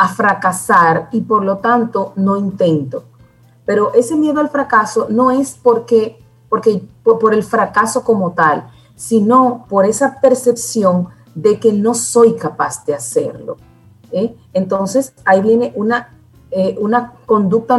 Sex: female